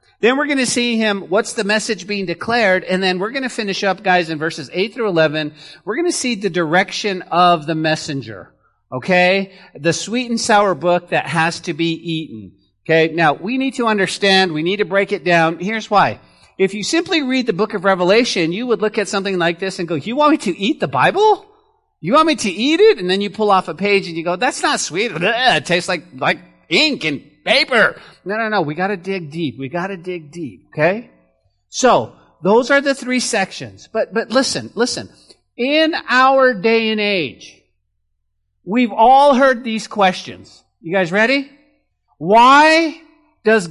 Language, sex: English, male